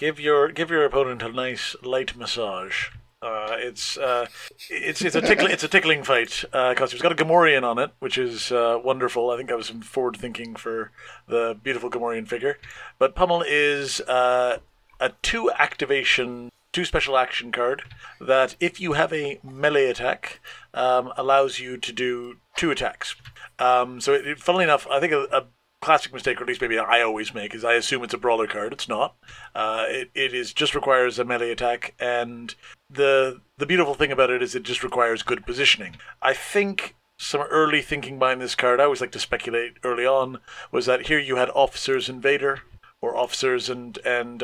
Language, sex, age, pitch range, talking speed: English, male, 50-69, 120-145 Hz, 195 wpm